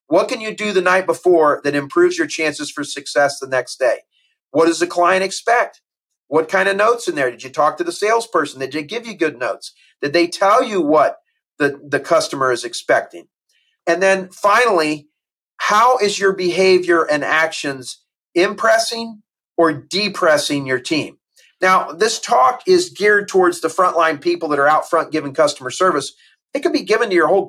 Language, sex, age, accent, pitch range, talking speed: English, male, 40-59, American, 155-220 Hz, 190 wpm